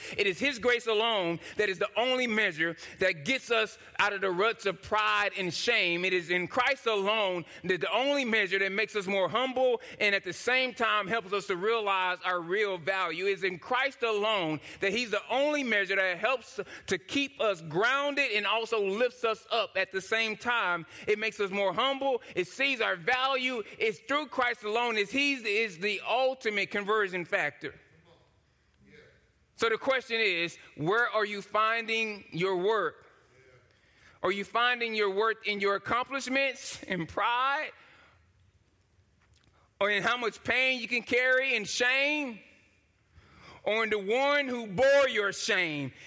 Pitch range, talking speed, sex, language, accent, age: 190-250 Hz, 170 wpm, male, English, American, 30-49